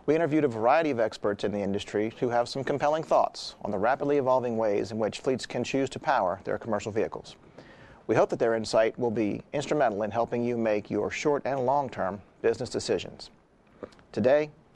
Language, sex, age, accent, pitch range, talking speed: English, male, 40-59, American, 115-140 Hz, 195 wpm